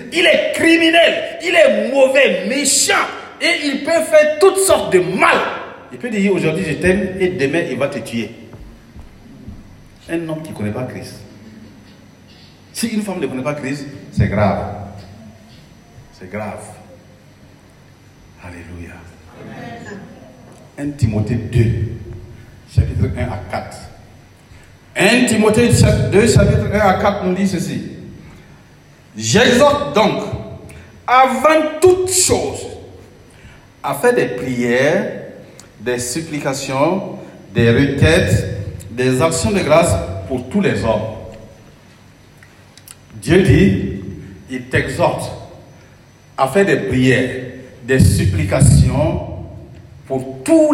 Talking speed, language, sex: 115 wpm, French, male